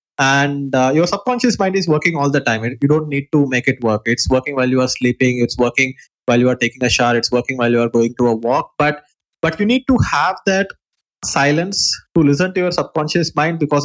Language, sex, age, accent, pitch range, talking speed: English, male, 20-39, Indian, 130-165 Hz, 240 wpm